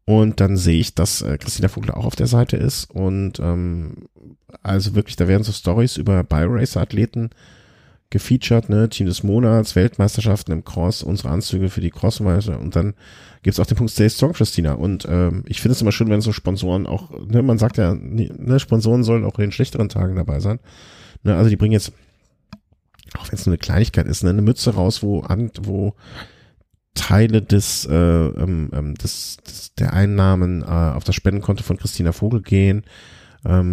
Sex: male